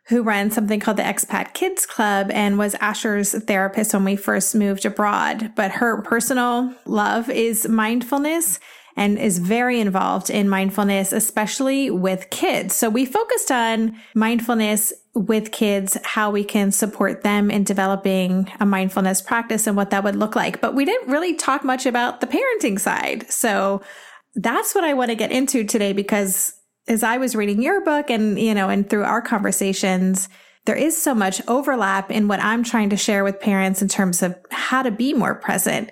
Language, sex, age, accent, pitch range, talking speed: English, female, 30-49, American, 200-240 Hz, 180 wpm